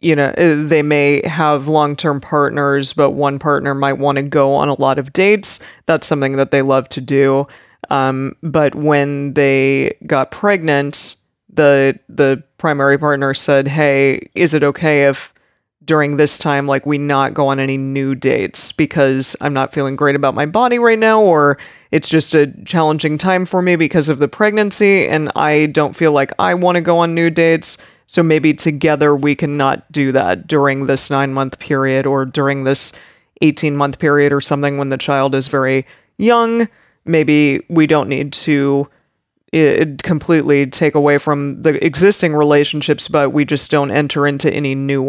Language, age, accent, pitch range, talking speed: English, 20-39, American, 140-155 Hz, 175 wpm